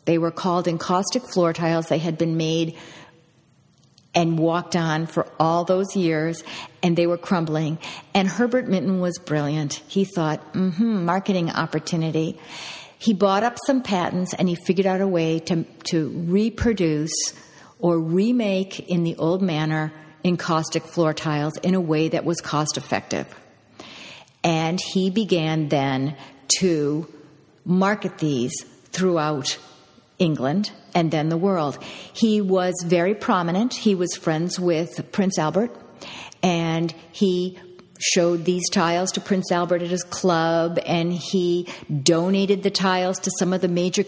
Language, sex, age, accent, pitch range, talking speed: English, female, 50-69, American, 165-190 Hz, 140 wpm